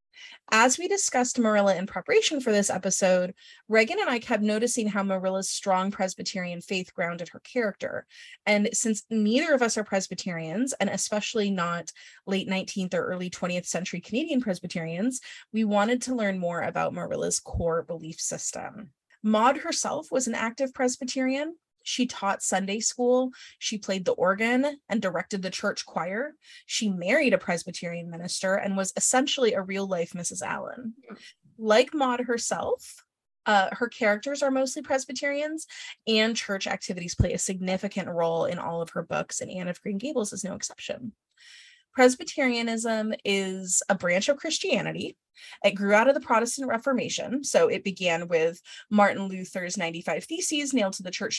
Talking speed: 160 wpm